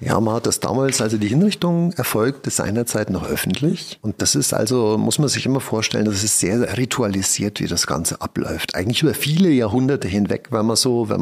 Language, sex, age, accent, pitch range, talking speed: German, male, 50-69, German, 105-130 Hz, 210 wpm